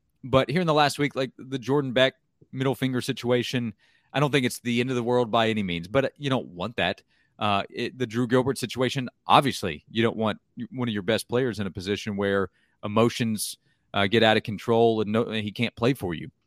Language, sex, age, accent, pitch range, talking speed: English, male, 30-49, American, 110-130 Hz, 220 wpm